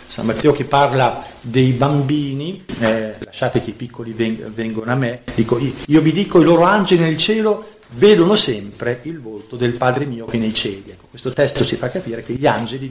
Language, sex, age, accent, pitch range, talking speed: Italian, male, 40-59, native, 120-165 Hz, 190 wpm